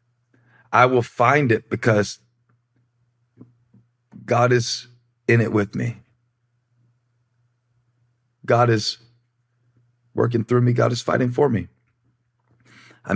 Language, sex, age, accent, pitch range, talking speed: English, male, 40-59, American, 115-120 Hz, 100 wpm